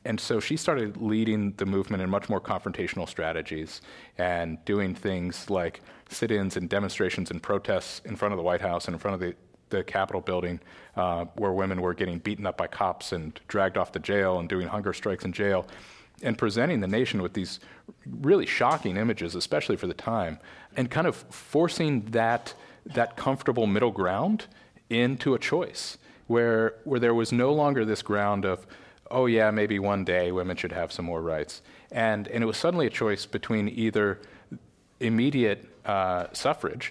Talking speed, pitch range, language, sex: 180 wpm, 90-110 Hz, English, male